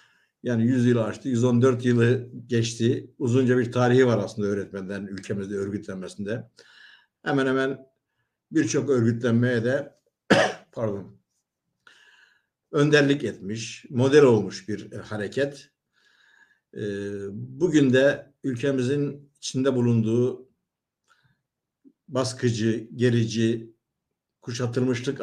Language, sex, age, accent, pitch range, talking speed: Turkish, male, 60-79, native, 110-130 Hz, 85 wpm